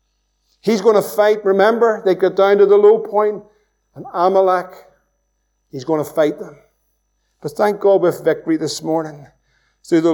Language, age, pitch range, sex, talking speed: English, 50-69, 195-235 Hz, male, 170 wpm